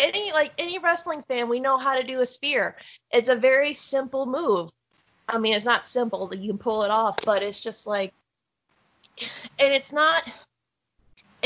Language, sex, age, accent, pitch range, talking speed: English, female, 20-39, American, 215-275 Hz, 185 wpm